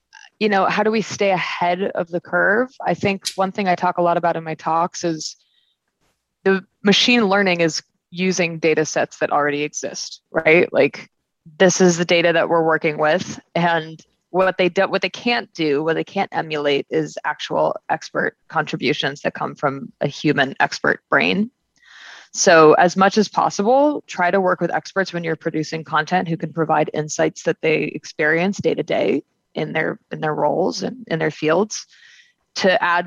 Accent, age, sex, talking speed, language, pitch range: American, 20-39, female, 185 wpm, English, 155-190 Hz